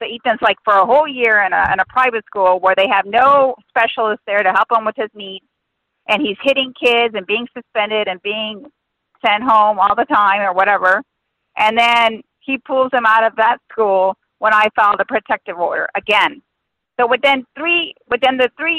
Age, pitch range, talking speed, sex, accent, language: 40-59, 210-260 Hz, 195 wpm, female, American, English